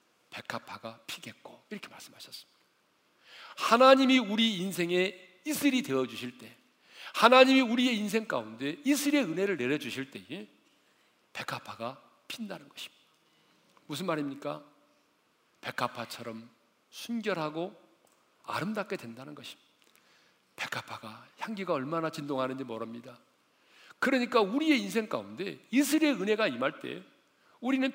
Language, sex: Korean, male